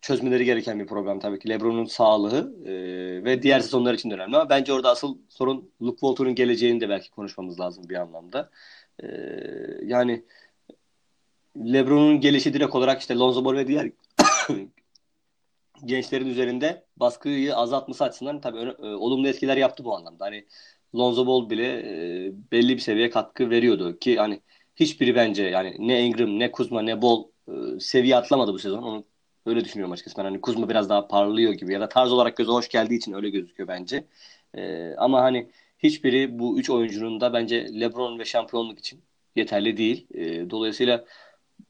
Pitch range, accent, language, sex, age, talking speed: 110-135 Hz, native, Turkish, male, 30-49, 165 wpm